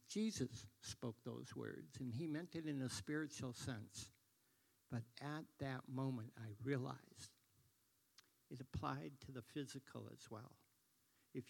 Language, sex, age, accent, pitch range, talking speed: English, male, 60-79, American, 110-135 Hz, 135 wpm